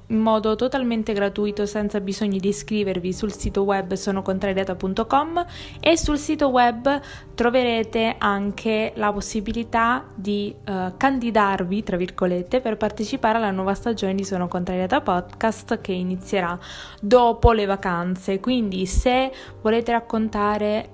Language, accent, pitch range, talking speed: Italian, native, 190-225 Hz, 125 wpm